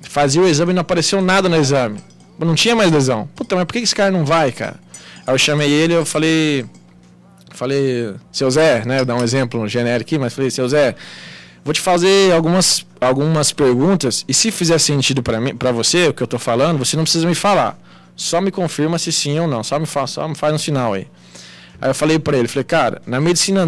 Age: 20-39